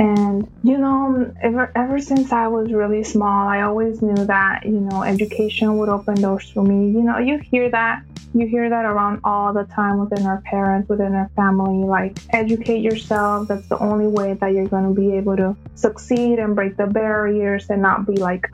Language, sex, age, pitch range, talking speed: English, female, 20-39, 200-230 Hz, 205 wpm